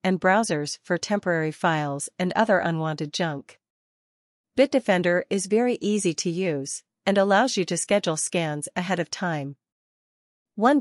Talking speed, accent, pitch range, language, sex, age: 140 wpm, American, 160-200 Hz, English, female, 40-59